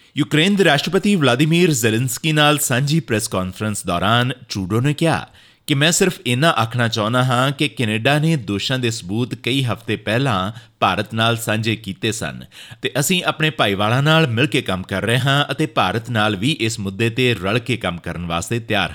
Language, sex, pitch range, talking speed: Punjabi, male, 105-135 Hz, 170 wpm